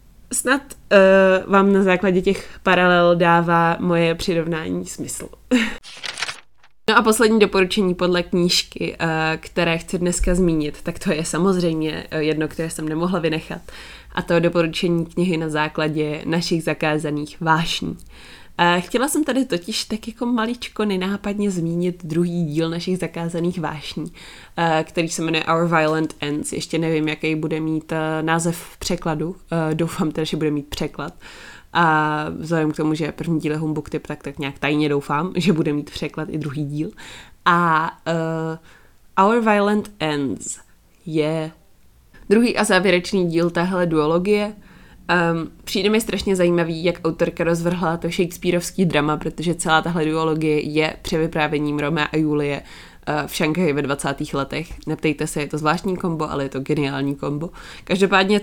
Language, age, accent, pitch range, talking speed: Czech, 20-39, native, 155-180 Hz, 145 wpm